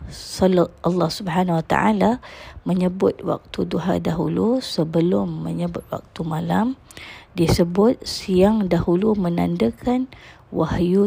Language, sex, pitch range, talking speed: Malay, female, 165-200 Hz, 100 wpm